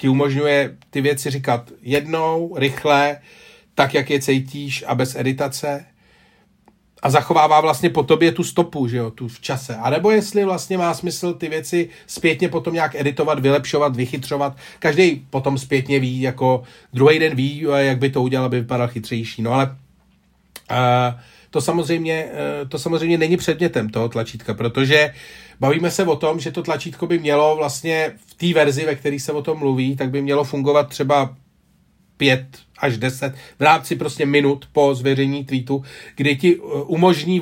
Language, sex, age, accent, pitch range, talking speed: Czech, male, 40-59, native, 135-160 Hz, 165 wpm